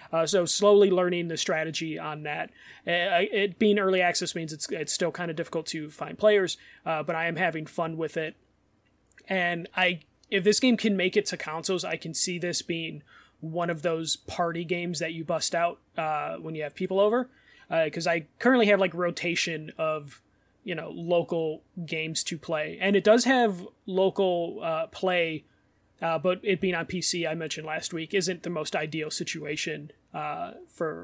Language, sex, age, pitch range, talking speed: English, male, 30-49, 155-185 Hz, 190 wpm